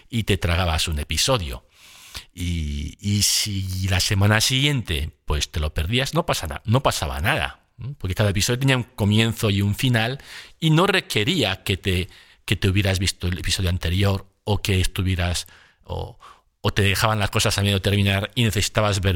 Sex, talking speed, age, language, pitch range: male, 165 wpm, 50-69, Spanish, 90-125 Hz